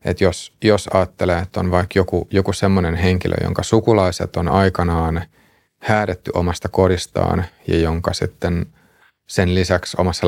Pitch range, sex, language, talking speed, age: 85-95 Hz, male, Finnish, 135 wpm, 30-49